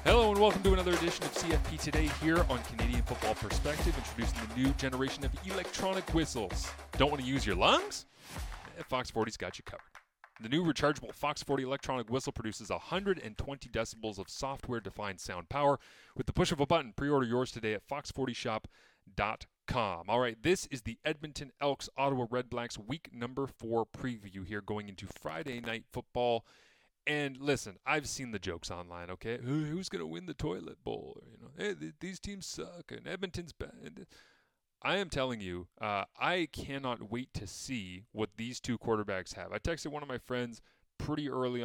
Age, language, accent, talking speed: 30-49, English, American, 180 wpm